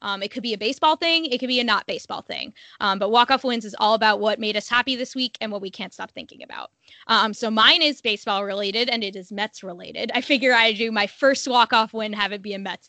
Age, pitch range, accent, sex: 20-39, 200-240 Hz, American, female